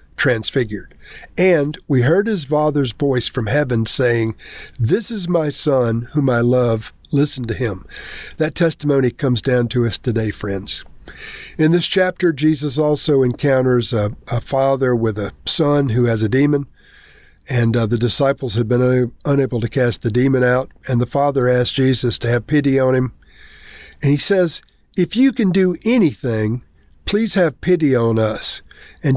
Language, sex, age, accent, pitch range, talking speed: English, male, 50-69, American, 120-155 Hz, 165 wpm